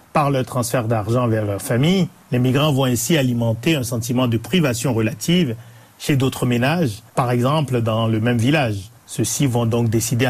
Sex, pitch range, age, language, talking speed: male, 115-140 Hz, 40-59, French, 175 wpm